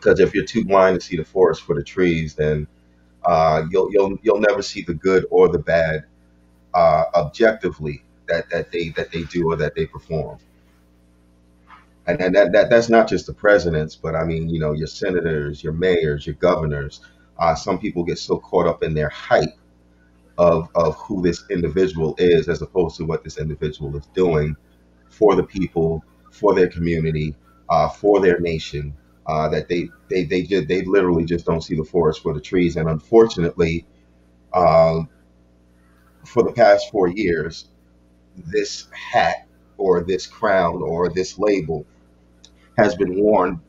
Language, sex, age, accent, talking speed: English, male, 30-49, American, 175 wpm